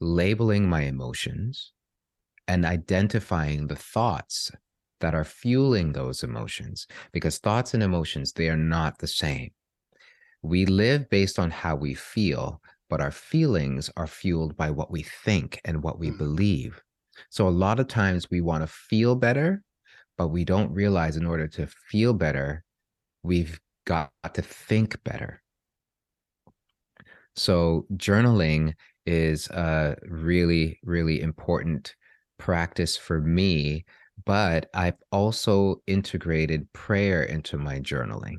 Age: 30-49